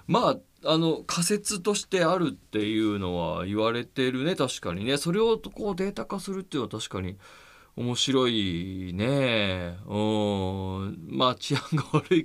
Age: 20-39